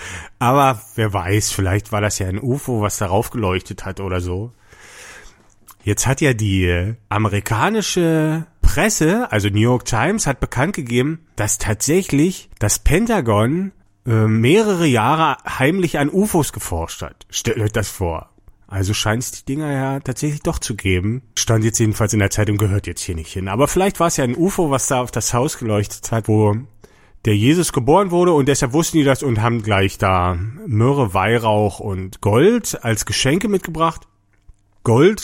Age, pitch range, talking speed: 40-59, 105-155 Hz, 170 wpm